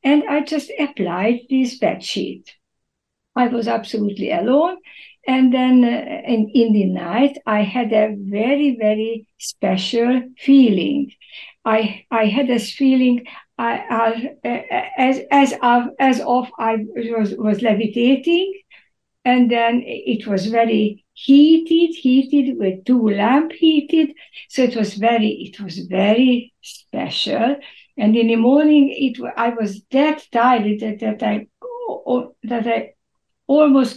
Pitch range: 220-280 Hz